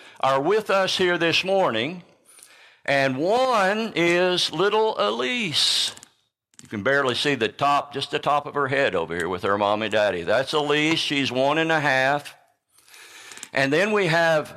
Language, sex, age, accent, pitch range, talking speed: English, male, 60-79, American, 130-185 Hz, 165 wpm